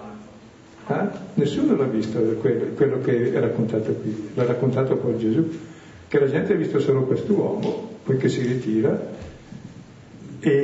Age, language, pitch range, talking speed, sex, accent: 60-79, Italian, 110-145 Hz, 140 wpm, male, native